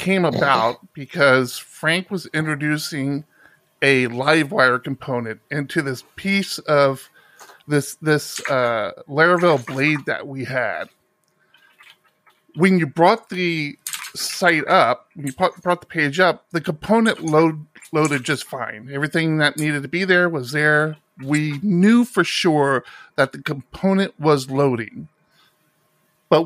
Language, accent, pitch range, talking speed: English, American, 140-180 Hz, 130 wpm